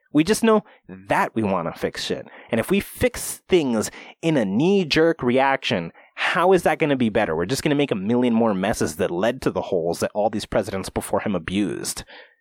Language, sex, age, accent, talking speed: English, male, 30-49, American, 220 wpm